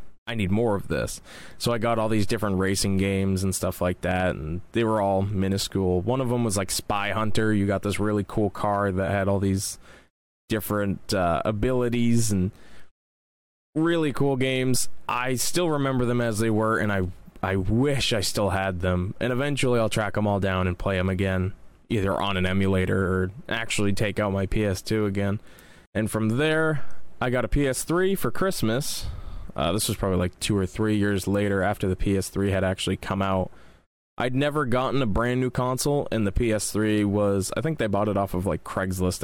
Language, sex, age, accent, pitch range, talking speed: English, male, 20-39, American, 95-120 Hz, 195 wpm